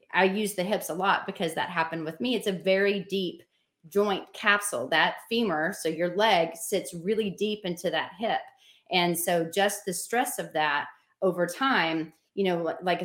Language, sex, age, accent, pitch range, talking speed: English, female, 30-49, American, 165-200 Hz, 185 wpm